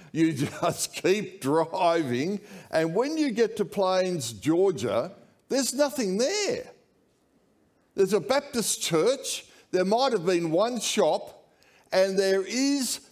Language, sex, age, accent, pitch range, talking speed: English, male, 60-79, Australian, 185-255 Hz, 125 wpm